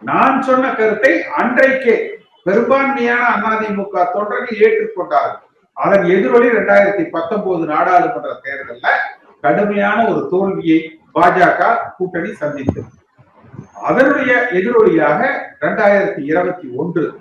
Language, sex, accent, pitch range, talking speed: Tamil, male, native, 185-245 Hz, 80 wpm